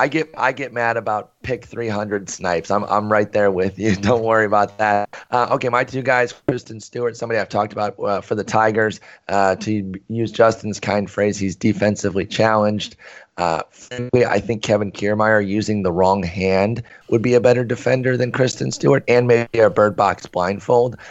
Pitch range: 100-115 Hz